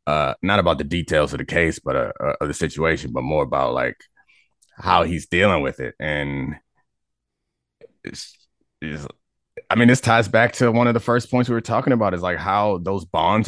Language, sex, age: English, male, 20-39